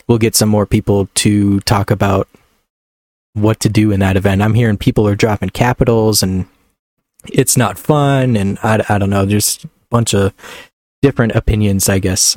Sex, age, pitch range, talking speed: male, 20-39, 100-125 Hz, 180 wpm